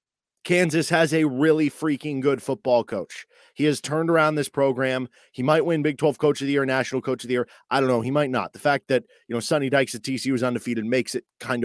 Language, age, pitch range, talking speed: English, 30-49, 125-155 Hz, 245 wpm